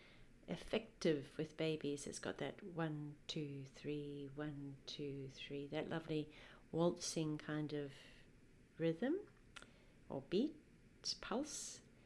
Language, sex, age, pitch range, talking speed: English, female, 40-59, 145-205 Hz, 105 wpm